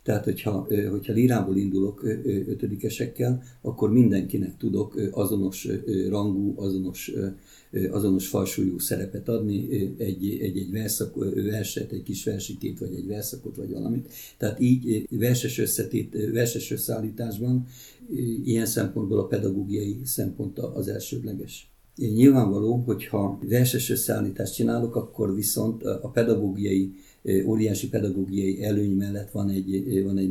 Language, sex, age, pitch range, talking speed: Hungarian, male, 50-69, 95-115 Hz, 120 wpm